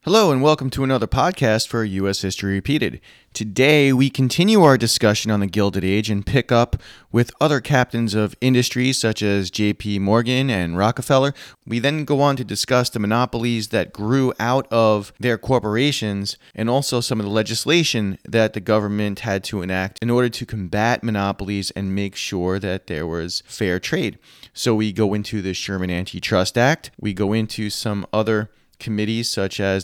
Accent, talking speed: American, 175 wpm